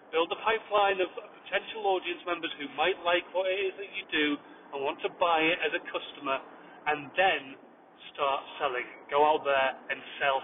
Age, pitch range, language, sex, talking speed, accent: 30-49, 155-200 Hz, English, male, 190 wpm, British